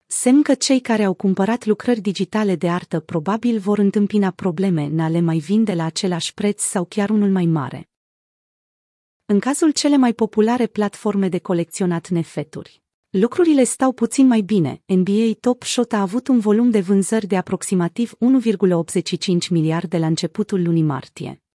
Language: Romanian